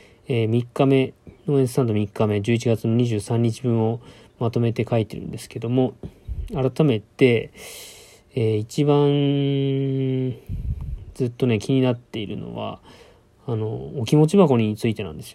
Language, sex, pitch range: Japanese, male, 115-140 Hz